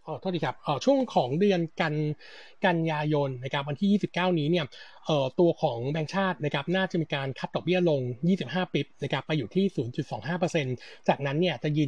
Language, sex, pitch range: Thai, male, 140-180 Hz